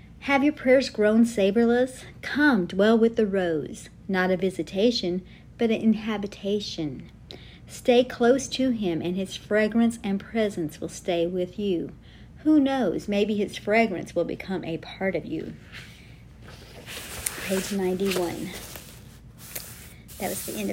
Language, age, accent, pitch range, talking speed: English, 50-69, American, 175-210 Hz, 135 wpm